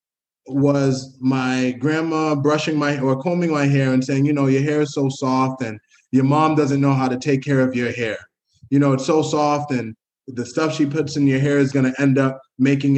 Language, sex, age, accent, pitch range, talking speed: English, male, 20-39, American, 130-150 Hz, 225 wpm